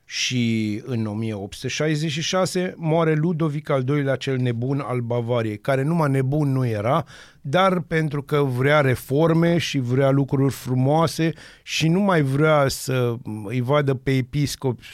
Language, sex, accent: Romanian, male, native